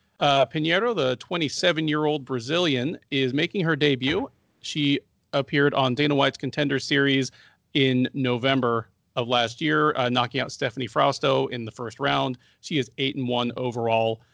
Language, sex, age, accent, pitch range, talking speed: English, male, 40-59, American, 125-150 Hz, 150 wpm